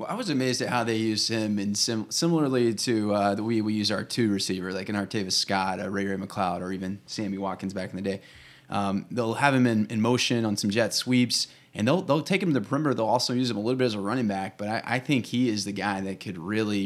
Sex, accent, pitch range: male, American, 100-120 Hz